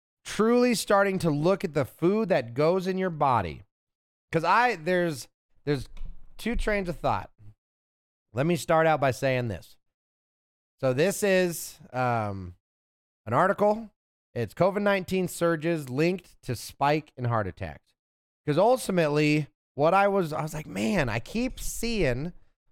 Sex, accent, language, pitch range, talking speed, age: male, American, English, 125-185 Hz, 145 wpm, 30-49